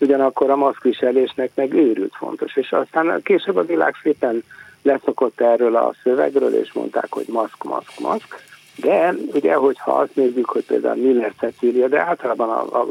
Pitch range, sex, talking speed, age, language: 115-155 Hz, male, 165 wpm, 50-69, Hungarian